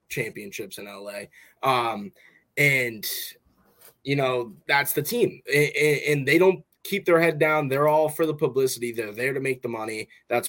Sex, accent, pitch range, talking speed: male, American, 120-150 Hz, 170 wpm